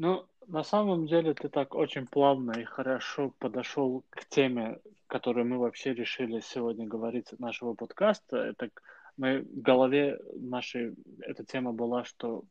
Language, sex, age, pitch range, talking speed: Russian, male, 20-39, 120-140 Hz, 140 wpm